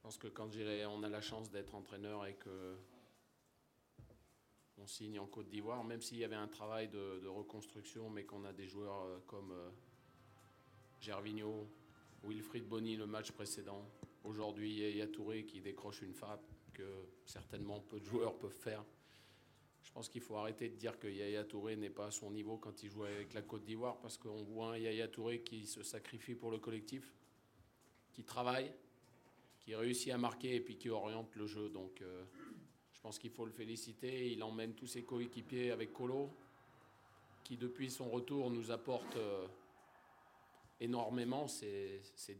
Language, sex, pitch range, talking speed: Swahili, male, 105-120 Hz, 175 wpm